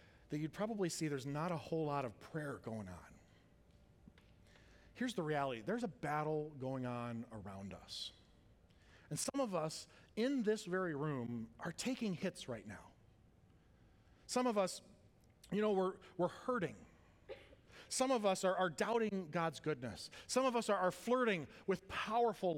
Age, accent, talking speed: 40-59, American, 160 wpm